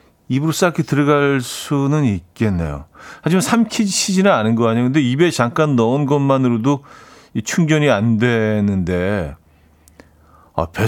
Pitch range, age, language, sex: 100-145 Hz, 40-59, Korean, male